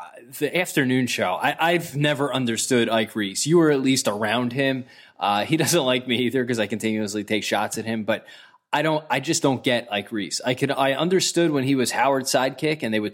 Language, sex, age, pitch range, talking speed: English, male, 20-39, 115-140 Hz, 225 wpm